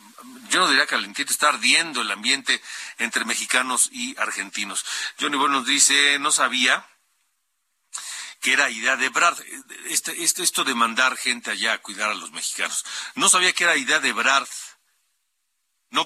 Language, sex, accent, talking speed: Spanish, male, Mexican, 165 wpm